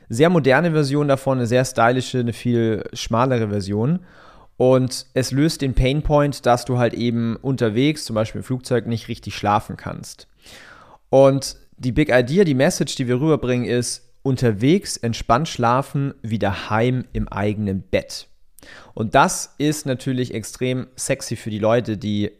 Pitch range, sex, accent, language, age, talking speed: 115-150 Hz, male, German, German, 30-49, 155 wpm